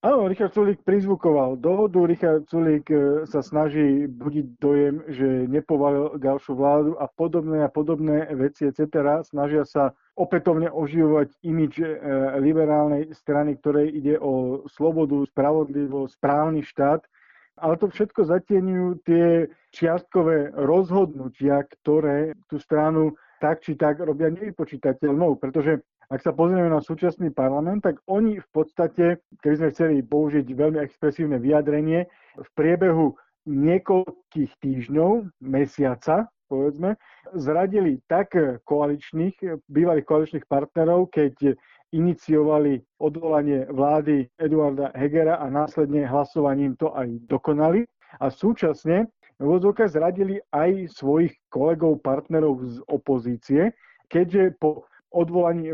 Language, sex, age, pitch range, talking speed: Slovak, male, 50-69, 145-170 Hz, 115 wpm